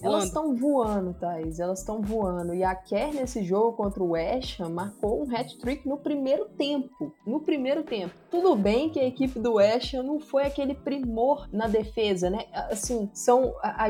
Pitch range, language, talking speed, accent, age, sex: 205-250 Hz, Portuguese, 190 wpm, Brazilian, 20-39, female